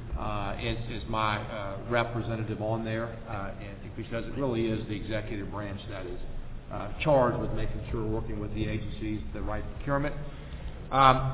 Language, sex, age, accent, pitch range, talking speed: English, male, 50-69, American, 115-135 Hz, 165 wpm